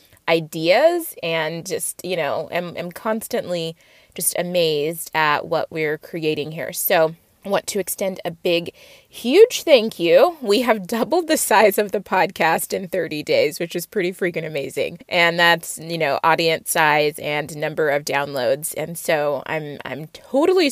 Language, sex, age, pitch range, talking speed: English, female, 20-39, 160-195 Hz, 160 wpm